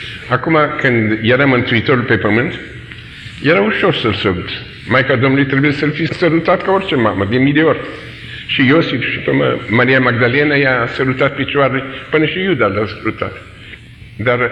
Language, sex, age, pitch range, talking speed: Romanian, male, 50-69, 120-160 Hz, 165 wpm